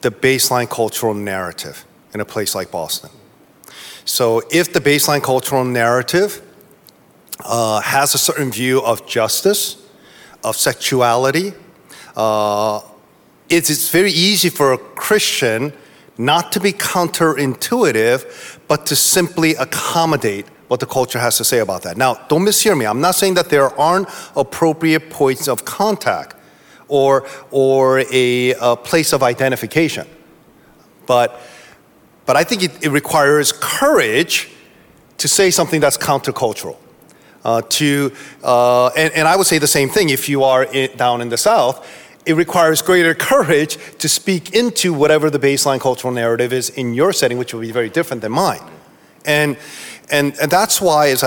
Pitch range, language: 125-165 Hz, English